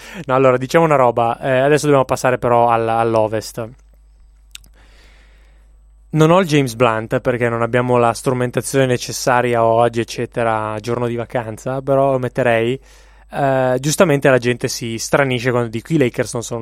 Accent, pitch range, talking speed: native, 115-145 Hz, 155 wpm